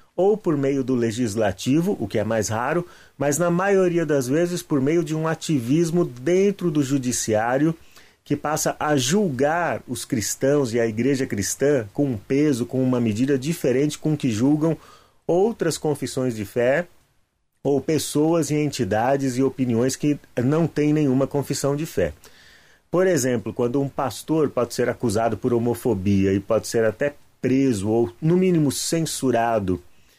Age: 30-49